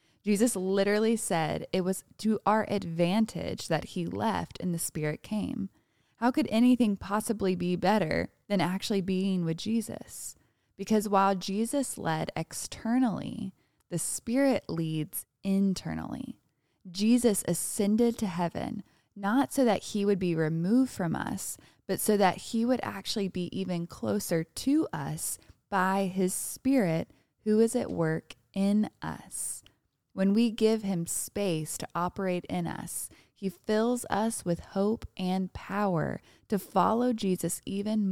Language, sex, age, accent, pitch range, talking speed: English, female, 20-39, American, 175-220 Hz, 140 wpm